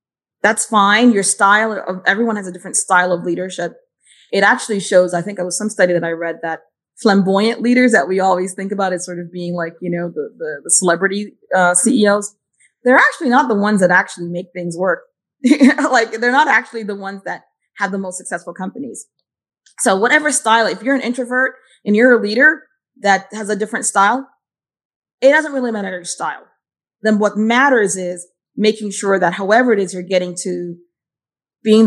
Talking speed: 195 wpm